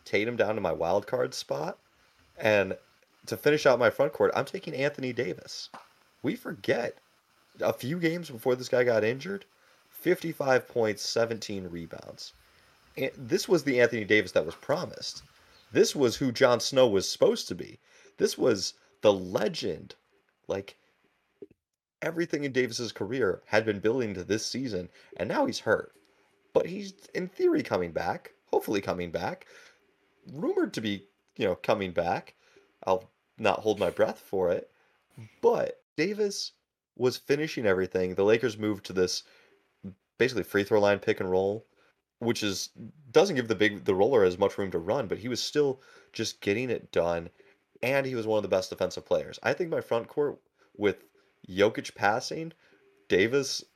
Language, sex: English, male